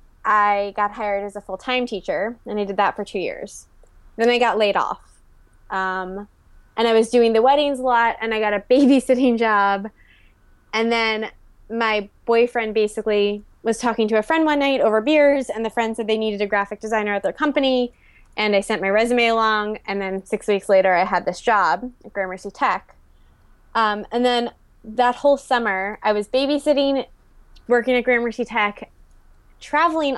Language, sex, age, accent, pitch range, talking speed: English, female, 20-39, American, 205-240 Hz, 185 wpm